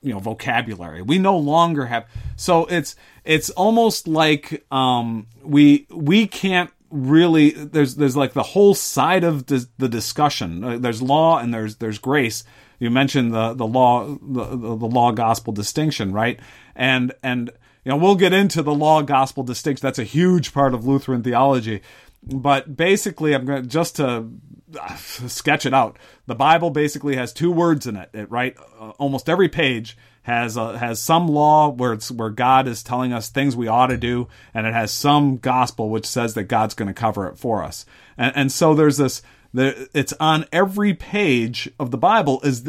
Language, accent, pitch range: English, American, 115-155 Hz